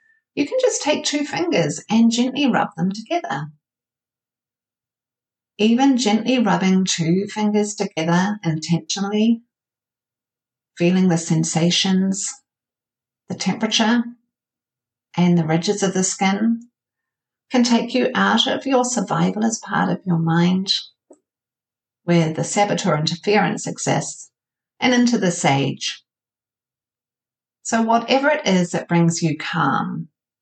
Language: English